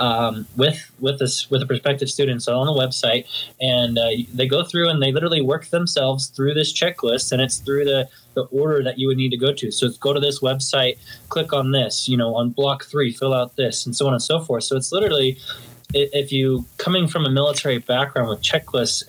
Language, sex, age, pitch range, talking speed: English, male, 20-39, 120-140 Hz, 230 wpm